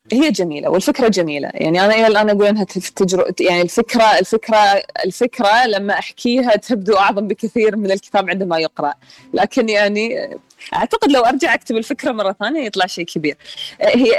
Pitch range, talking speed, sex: 190-260 Hz, 150 wpm, female